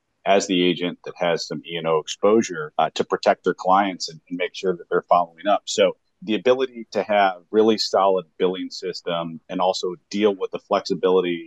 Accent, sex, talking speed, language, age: American, male, 195 wpm, English, 40-59